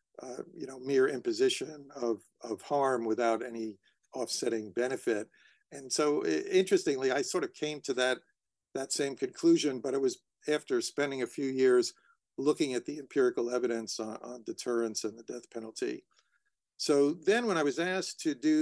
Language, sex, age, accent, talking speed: English, male, 50-69, American, 170 wpm